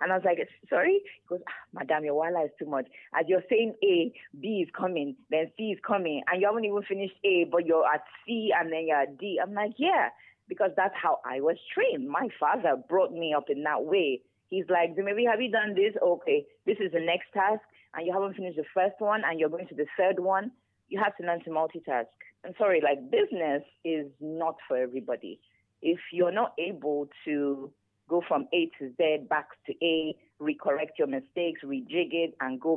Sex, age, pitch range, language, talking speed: female, 30-49, 150-205 Hz, English, 220 wpm